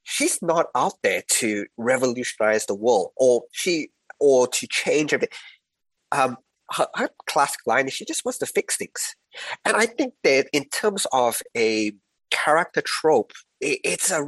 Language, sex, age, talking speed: English, male, 30-49, 165 wpm